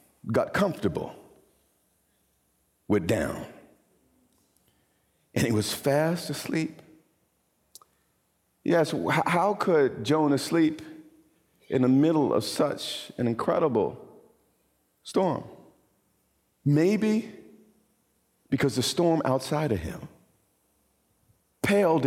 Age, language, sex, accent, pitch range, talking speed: 50-69, English, male, American, 120-175 Hz, 80 wpm